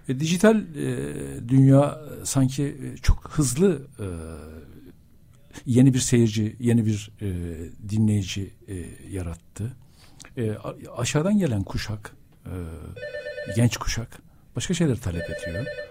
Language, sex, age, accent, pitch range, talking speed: Turkish, male, 60-79, native, 100-150 Hz, 110 wpm